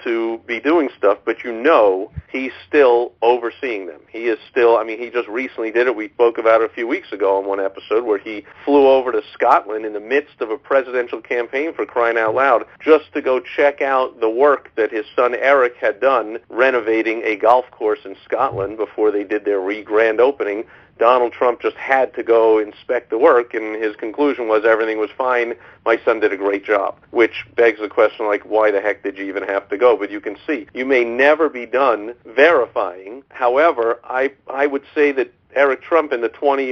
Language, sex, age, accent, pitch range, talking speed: English, male, 50-69, American, 110-135 Hz, 215 wpm